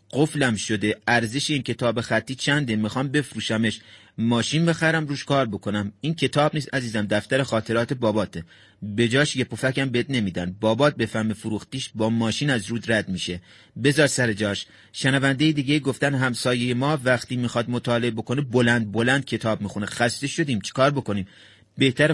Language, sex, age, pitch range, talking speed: Persian, male, 30-49, 110-140 Hz, 155 wpm